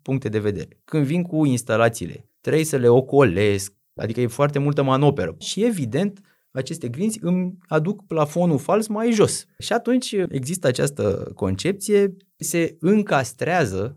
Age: 20-39